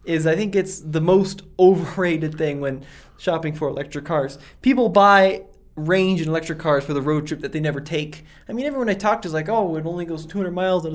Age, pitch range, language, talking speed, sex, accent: 20-39, 140-190 Hz, English, 230 wpm, male, American